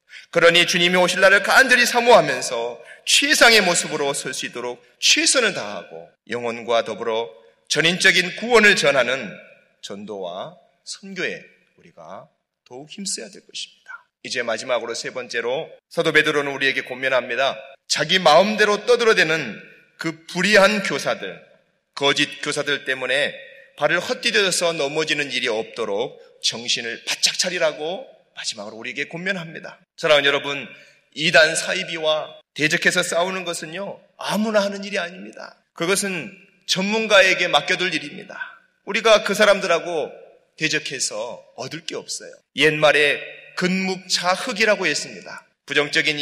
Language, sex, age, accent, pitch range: Korean, male, 30-49, native, 155-220 Hz